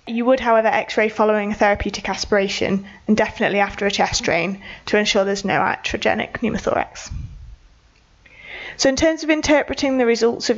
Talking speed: 160 wpm